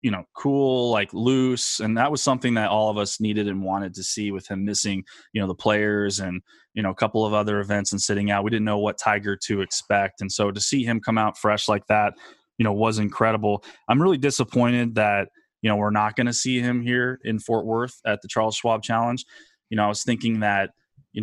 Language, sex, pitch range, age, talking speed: English, male, 100-120 Hz, 20-39, 240 wpm